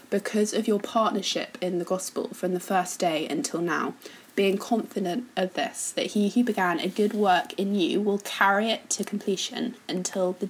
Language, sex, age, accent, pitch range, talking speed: English, female, 20-39, British, 180-215 Hz, 190 wpm